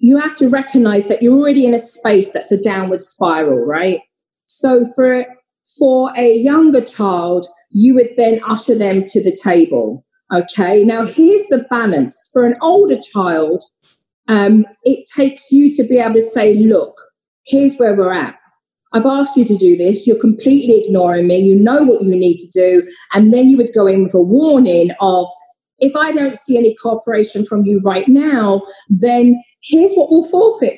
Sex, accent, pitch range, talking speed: female, British, 210-280 Hz, 185 wpm